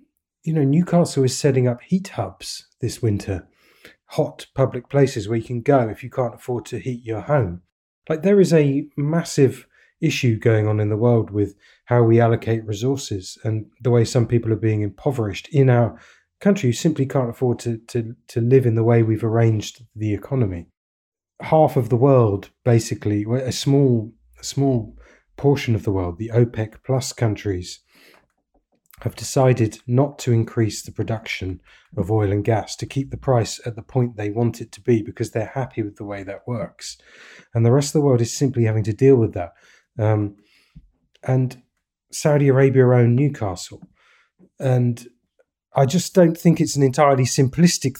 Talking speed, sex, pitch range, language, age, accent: 180 wpm, male, 110-135 Hz, English, 30-49, British